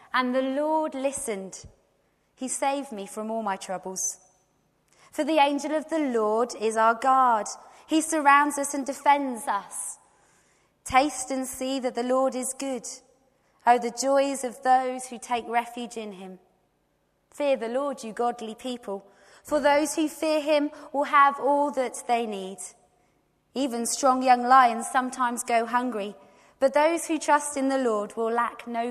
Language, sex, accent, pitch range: English, female, British, 220-275 Hz